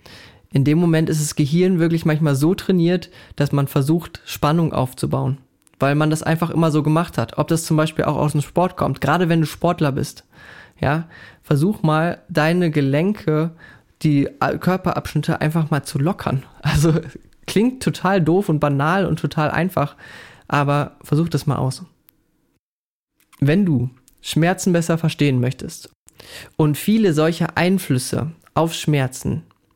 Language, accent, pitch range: German, German, 145-170 Hz